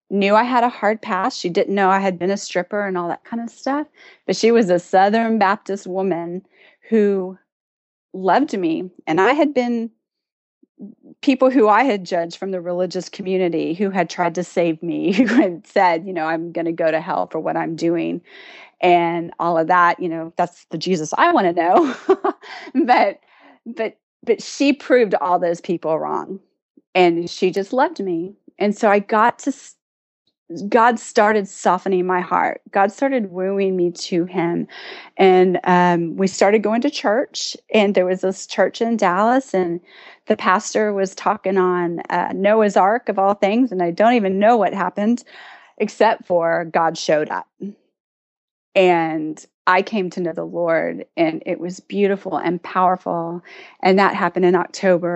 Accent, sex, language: American, female, English